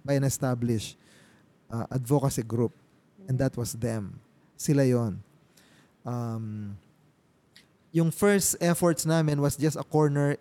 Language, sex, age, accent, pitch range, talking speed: Filipino, male, 20-39, native, 120-155 Hz, 120 wpm